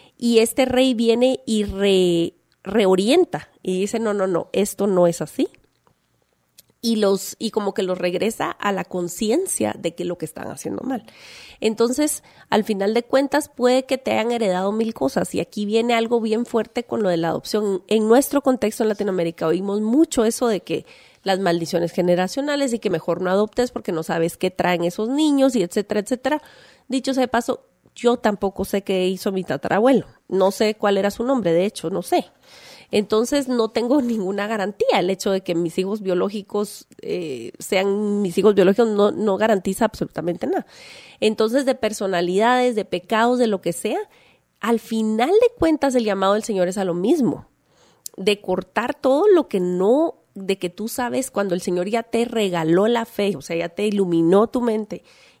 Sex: female